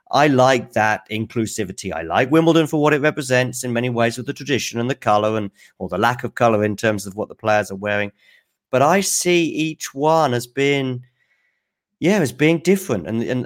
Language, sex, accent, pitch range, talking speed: English, male, British, 105-140 Hz, 205 wpm